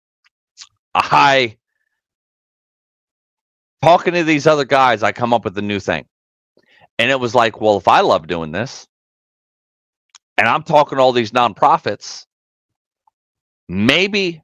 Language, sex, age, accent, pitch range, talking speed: English, male, 30-49, American, 110-150 Hz, 130 wpm